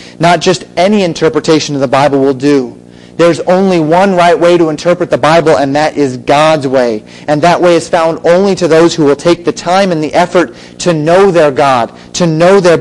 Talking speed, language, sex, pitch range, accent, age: 215 wpm, English, male, 125-165 Hz, American, 30-49